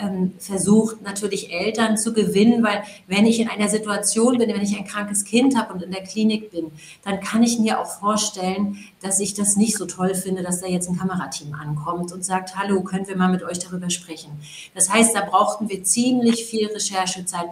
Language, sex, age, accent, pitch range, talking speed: German, female, 40-59, German, 180-210 Hz, 205 wpm